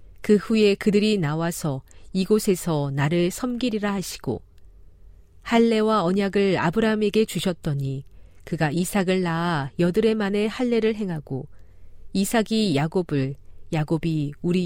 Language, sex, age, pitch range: Korean, female, 40-59, 140-210 Hz